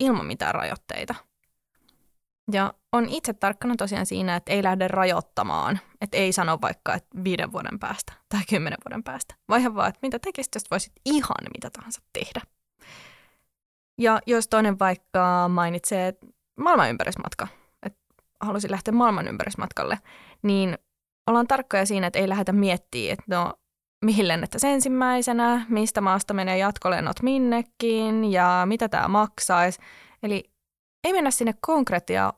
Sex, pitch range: female, 185-240 Hz